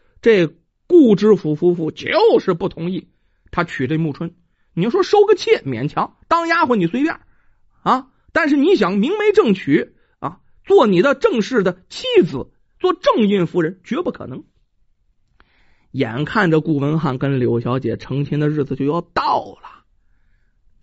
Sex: male